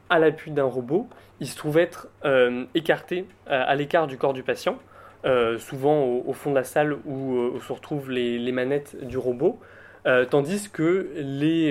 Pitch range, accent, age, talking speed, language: 125-150 Hz, French, 20-39, 195 wpm, French